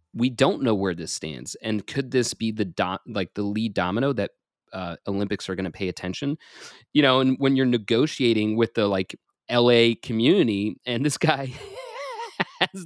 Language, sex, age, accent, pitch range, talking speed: English, male, 30-49, American, 100-130 Hz, 180 wpm